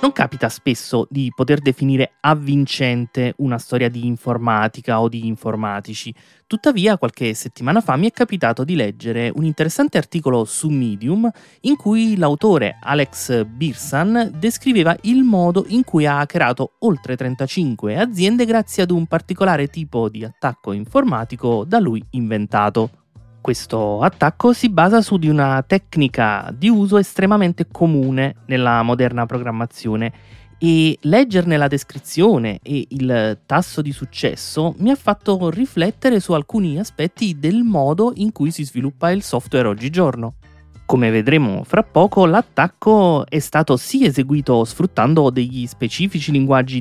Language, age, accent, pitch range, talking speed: Italian, 30-49, native, 120-190 Hz, 135 wpm